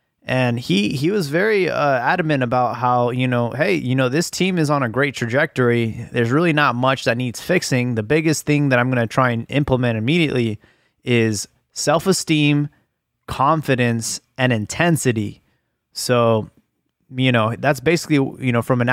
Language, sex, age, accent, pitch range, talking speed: English, male, 20-39, American, 120-140 Hz, 170 wpm